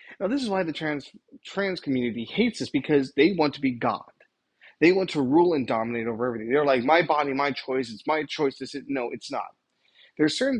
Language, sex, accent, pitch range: English, male, American, 115-140 Hz